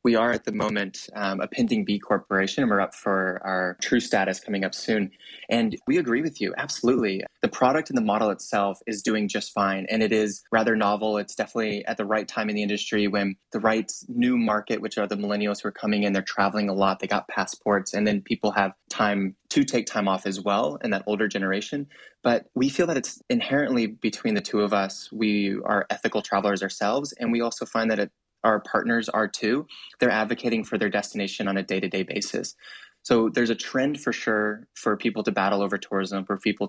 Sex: male